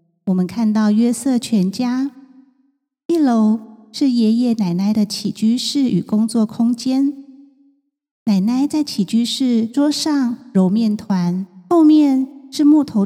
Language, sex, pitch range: Chinese, female, 205-265 Hz